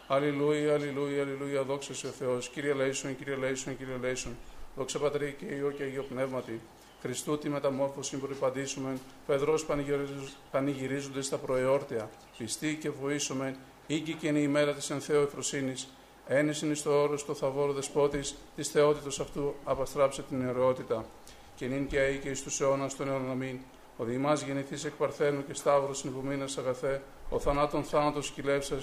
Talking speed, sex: 105 wpm, male